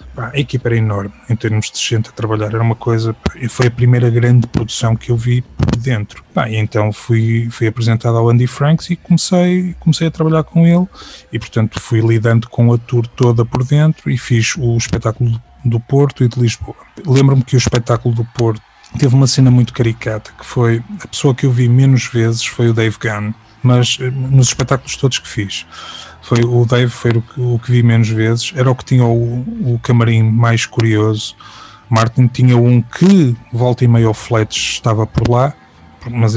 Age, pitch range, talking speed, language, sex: 20-39, 115-125 Hz, 195 wpm, Portuguese, male